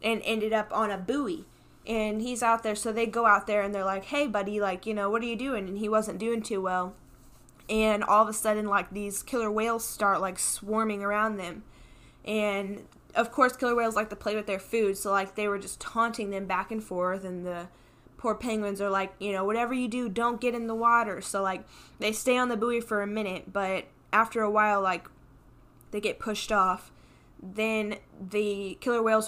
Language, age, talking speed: English, 10-29, 220 wpm